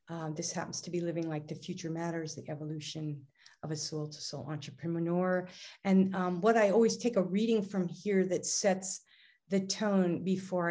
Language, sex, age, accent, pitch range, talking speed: English, female, 50-69, American, 165-195 Hz, 175 wpm